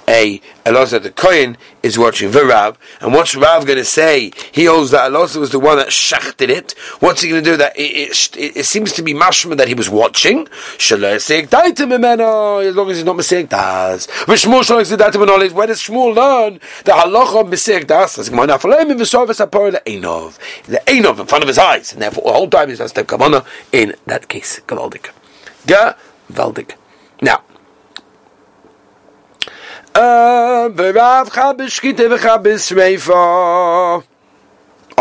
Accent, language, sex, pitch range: British, English, male, 175-275 Hz